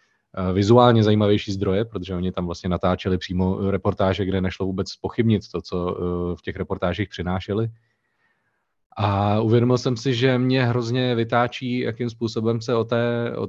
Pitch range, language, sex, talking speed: 95-115 Hz, Slovak, male, 150 wpm